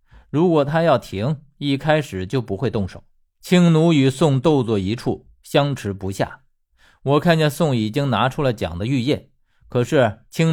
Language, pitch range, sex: Chinese, 105-155 Hz, male